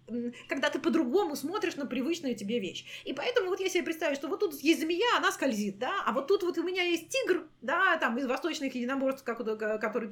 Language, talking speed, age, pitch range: Russian, 220 wpm, 30-49, 240-355 Hz